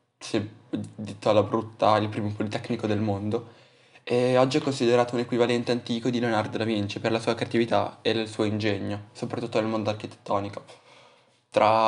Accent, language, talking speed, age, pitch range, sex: native, Italian, 165 wpm, 10-29, 110-120 Hz, male